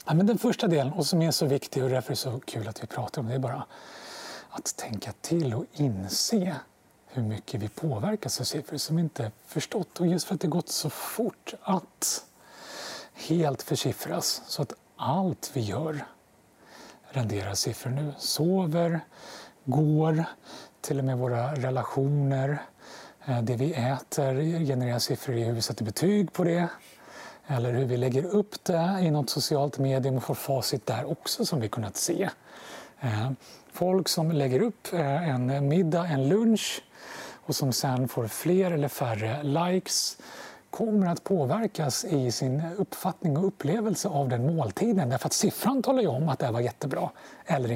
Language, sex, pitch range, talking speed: Swedish, male, 130-170 Hz, 165 wpm